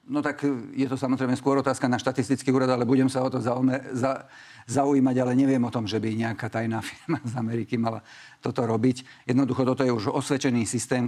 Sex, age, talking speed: male, 50-69, 195 wpm